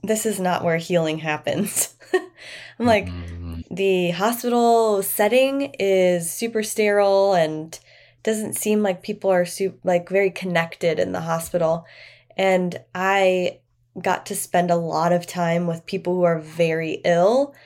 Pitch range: 165-195 Hz